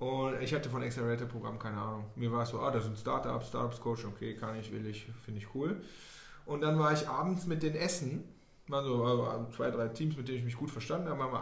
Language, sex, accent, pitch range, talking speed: German, male, German, 130-170 Hz, 245 wpm